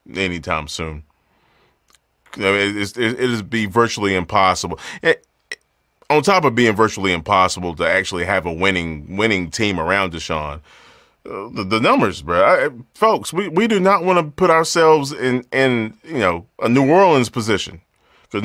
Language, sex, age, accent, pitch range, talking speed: English, male, 30-49, American, 95-135 Hz, 165 wpm